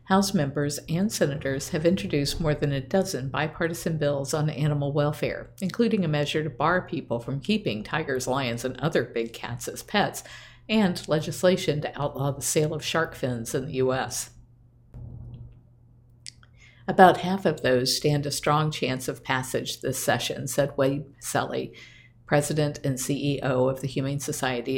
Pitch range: 125-155 Hz